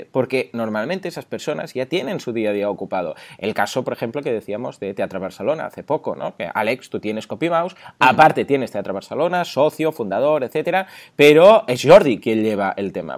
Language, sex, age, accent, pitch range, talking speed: Spanish, male, 20-39, Spanish, 120-170 Hz, 195 wpm